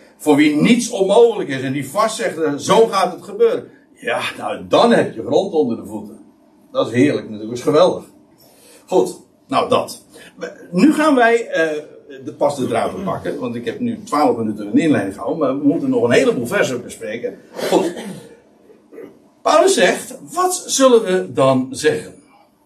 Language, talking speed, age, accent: Dutch, 175 wpm, 60-79, Dutch